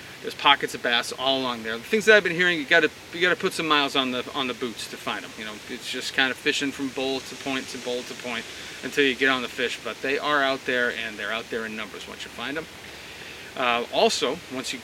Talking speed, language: 270 wpm, English